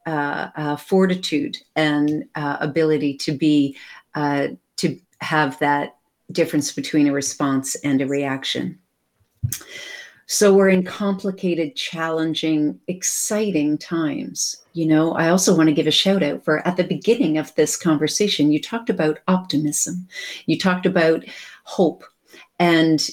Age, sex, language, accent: 50-69, female, English, American